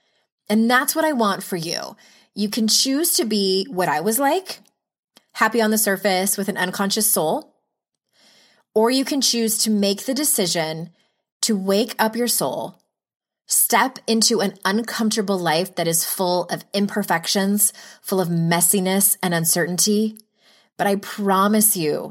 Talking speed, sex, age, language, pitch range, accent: 150 wpm, female, 20-39, English, 160-210 Hz, American